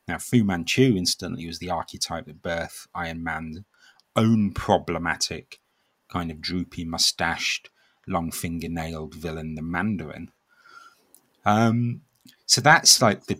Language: English